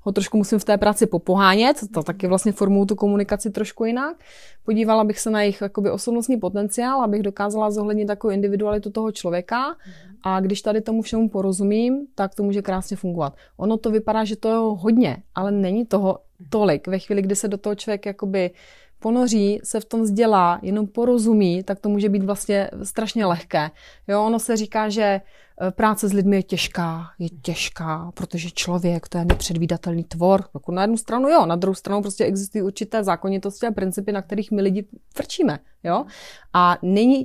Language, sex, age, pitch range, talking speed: Czech, female, 30-49, 195-240 Hz, 180 wpm